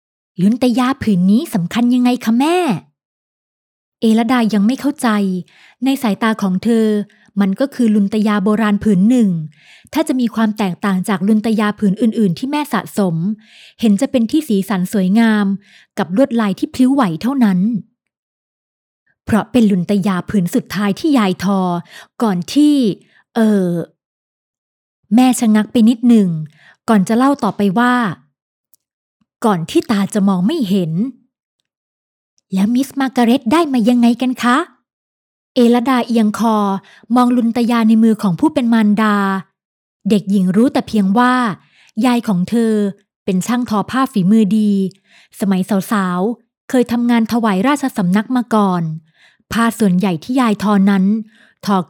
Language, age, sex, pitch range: Thai, 20-39, female, 195-240 Hz